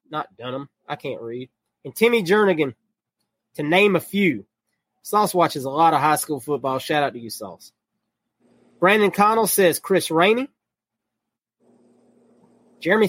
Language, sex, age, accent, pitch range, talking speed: English, male, 30-49, American, 155-215 Hz, 140 wpm